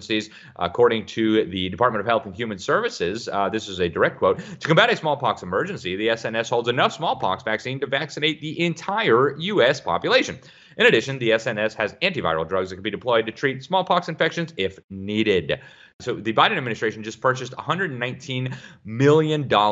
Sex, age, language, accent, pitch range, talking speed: male, 30-49, English, American, 90-125 Hz, 175 wpm